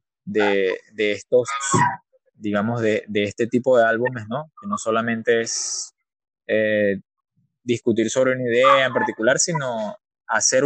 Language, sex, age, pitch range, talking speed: Spanish, male, 20-39, 115-155 Hz, 135 wpm